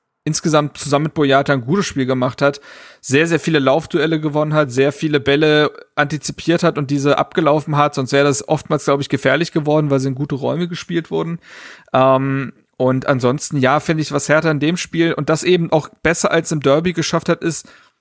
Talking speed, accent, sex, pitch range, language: 205 wpm, German, male, 150-175 Hz, German